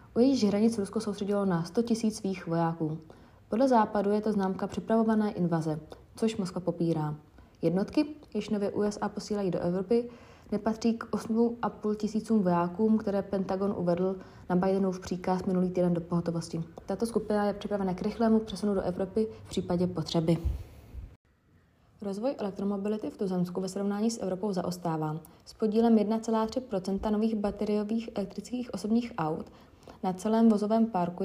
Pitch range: 180-220 Hz